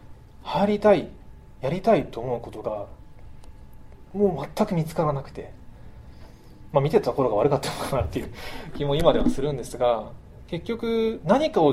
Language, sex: Japanese, male